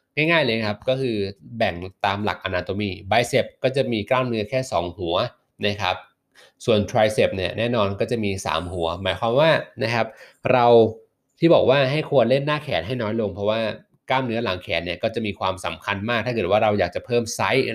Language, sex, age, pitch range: Thai, male, 20-39, 100-125 Hz